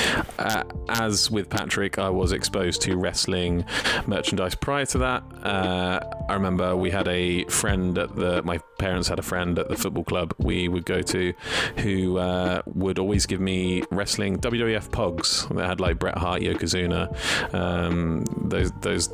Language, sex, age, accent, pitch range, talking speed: English, male, 30-49, British, 90-100 Hz, 165 wpm